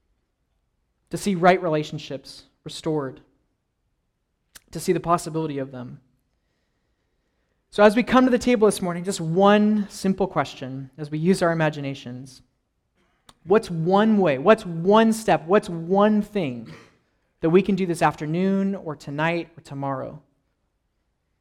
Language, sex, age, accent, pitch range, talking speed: English, male, 20-39, American, 125-180 Hz, 135 wpm